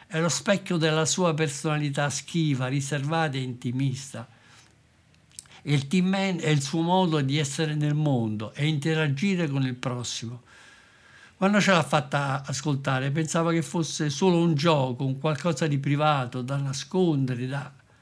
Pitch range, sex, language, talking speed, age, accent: 130-170 Hz, male, Italian, 145 wpm, 60-79, native